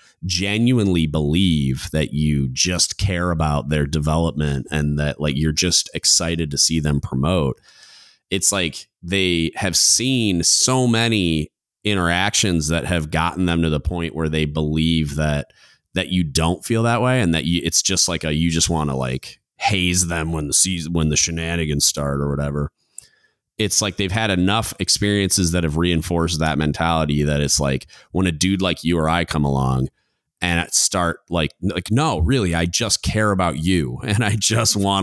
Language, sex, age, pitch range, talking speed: English, male, 30-49, 80-95 Hz, 180 wpm